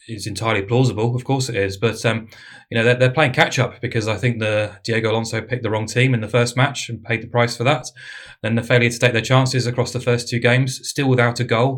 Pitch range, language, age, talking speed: 115-125 Hz, English, 20-39, 260 wpm